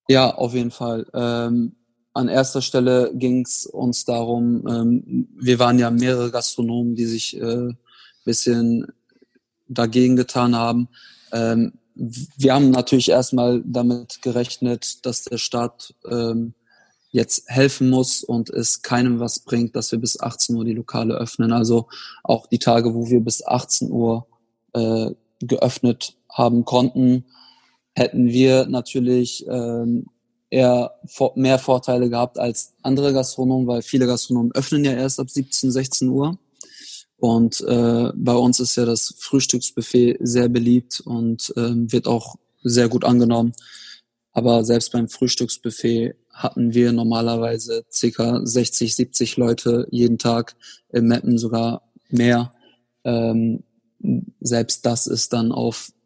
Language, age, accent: German, 20-39, German